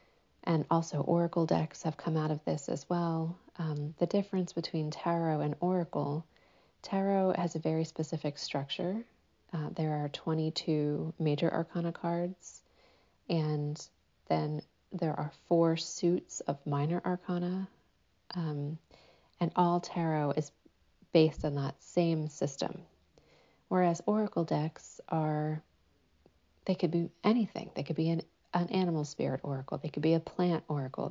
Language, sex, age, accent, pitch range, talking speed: English, female, 30-49, American, 150-175 Hz, 140 wpm